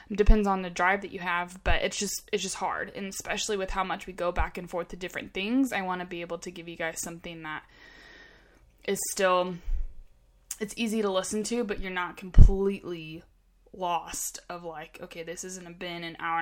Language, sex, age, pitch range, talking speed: English, female, 20-39, 170-195 Hz, 210 wpm